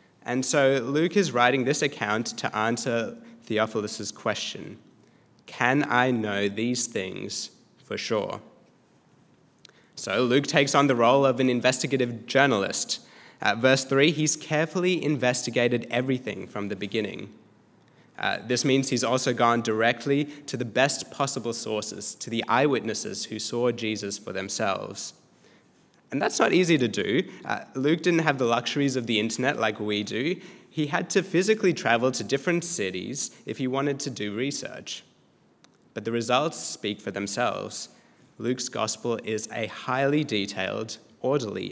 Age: 20-39